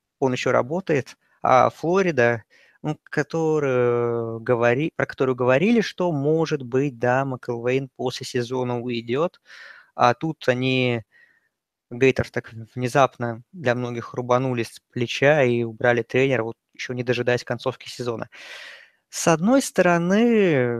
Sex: male